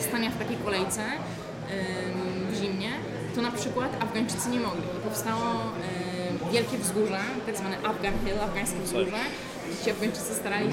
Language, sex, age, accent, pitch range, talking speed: Polish, female, 20-39, native, 190-225 Hz, 150 wpm